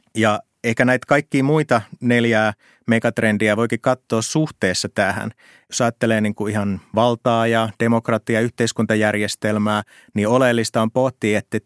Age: 30-49